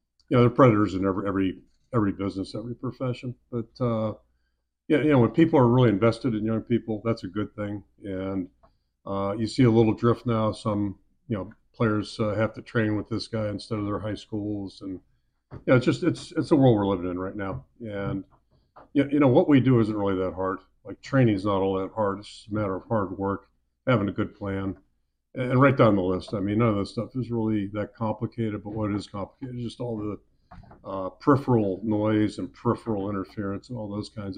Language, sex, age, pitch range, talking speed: English, male, 50-69, 95-115 Hz, 220 wpm